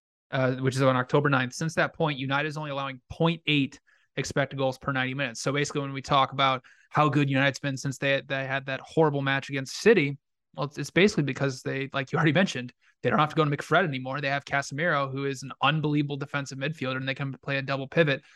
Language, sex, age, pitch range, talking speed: English, male, 20-39, 130-155 Hz, 235 wpm